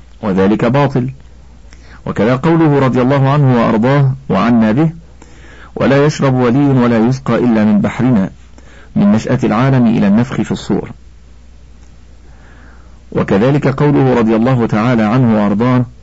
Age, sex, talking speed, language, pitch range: 50-69, male, 120 wpm, Arabic, 100-130 Hz